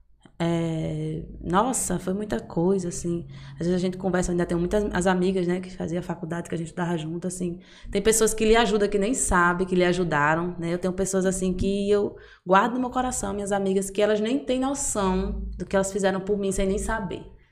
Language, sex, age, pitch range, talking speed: Portuguese, female, 20-39, 175-215 Hz, 220 wpm